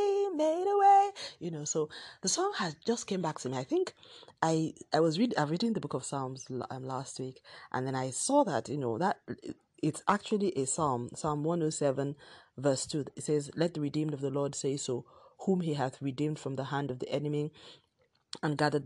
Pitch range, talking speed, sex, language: 130-150 Hz, 205 wpm, female, English